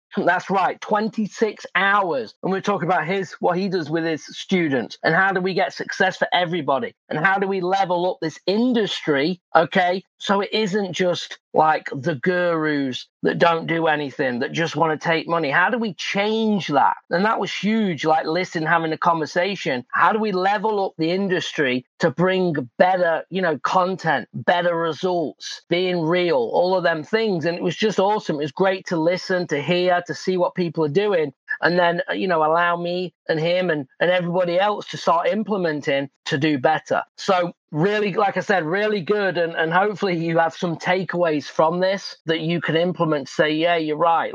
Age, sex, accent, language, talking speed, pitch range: 40-59, male, British, English, 195 wpm, 165-195 Hz